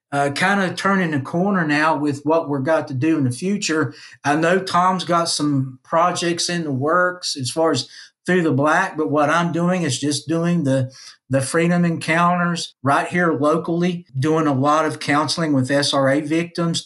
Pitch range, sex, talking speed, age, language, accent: 145-170 Hz, male, 190 wpm, 50-69, English, American